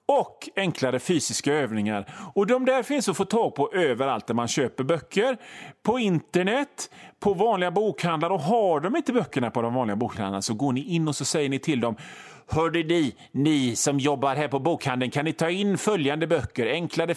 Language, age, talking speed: Swedish, 30-49, 195 wpm